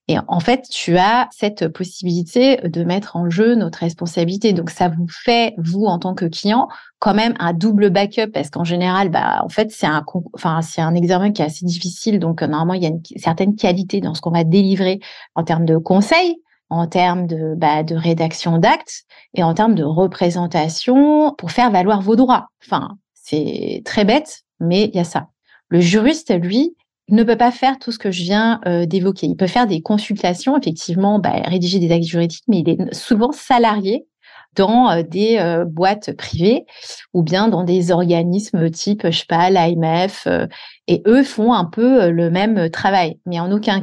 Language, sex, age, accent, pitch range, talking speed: French, female, 30-49, French, 170-220 Hz, 195 wpm